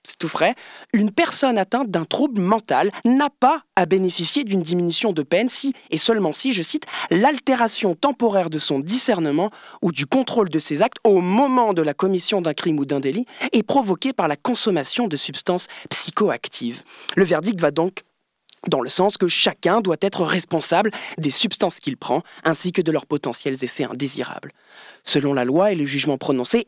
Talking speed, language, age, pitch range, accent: 185 wpm, French, 20-39, 155-235 Hz, French